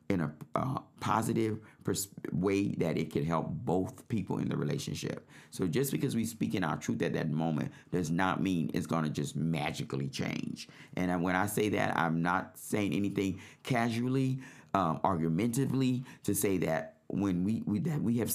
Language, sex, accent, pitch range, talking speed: English, male, American, 85-115 Hz, 180 wpm